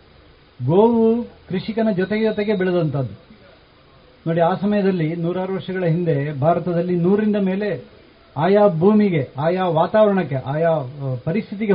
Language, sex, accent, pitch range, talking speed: Kannada, male, native, 150-190 Hz, 100 wpm